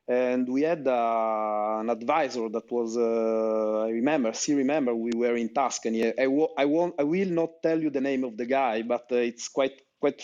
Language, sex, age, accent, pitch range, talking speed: English, male, 30-49, Italian, 110-130 Hz, 210 wpm